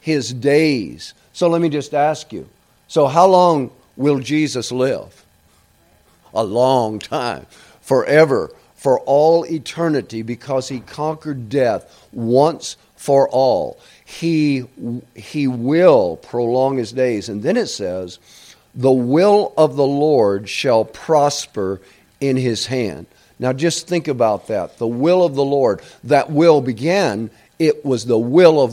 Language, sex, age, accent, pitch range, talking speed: English, male, 50-69, American, 120-155 Hz, 140 wpm